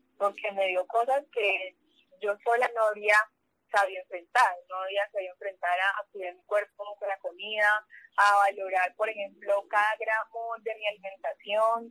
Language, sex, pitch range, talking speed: Spanish, female, 195-235 Hz, 160 wpm